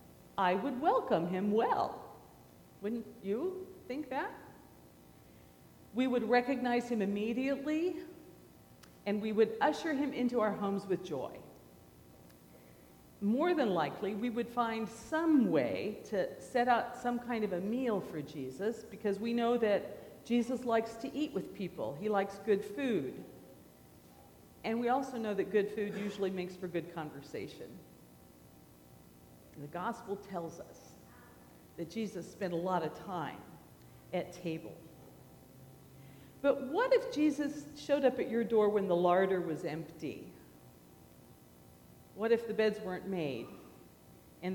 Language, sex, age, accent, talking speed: English, female, 50-69, American, 135 wpm